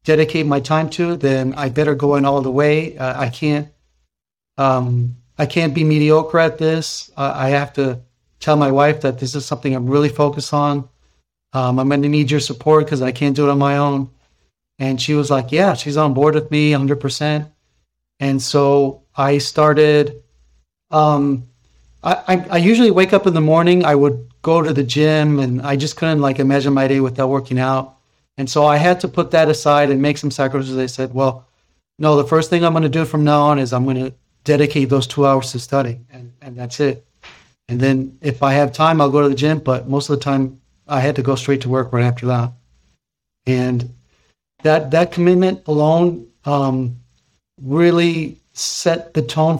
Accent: American